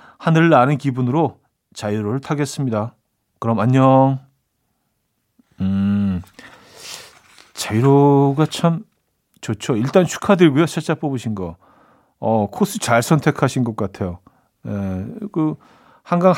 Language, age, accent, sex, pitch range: Korean, 40-59, native, male, 110-150 Hz